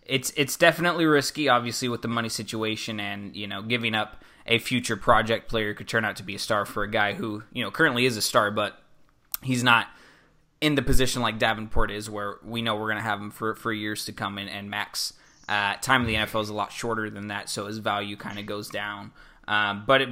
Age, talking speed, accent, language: 20-39, 240 wpm, American, English